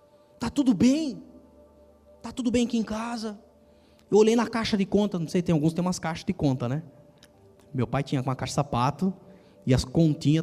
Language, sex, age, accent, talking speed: Portuguese, male, 20-39, Brazilian, 200 wpm